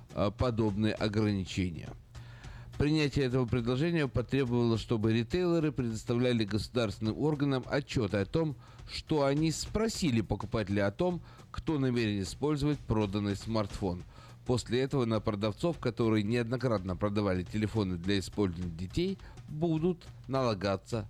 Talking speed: 110 wpm